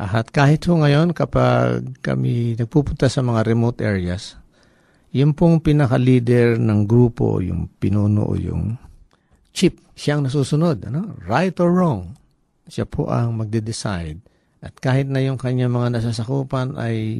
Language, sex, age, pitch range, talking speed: Filipino, male, 50-69, 100-135 Hz, 135 wpm